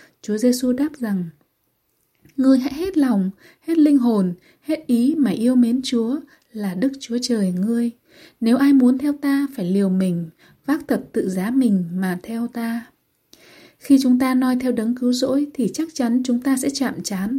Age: 20-39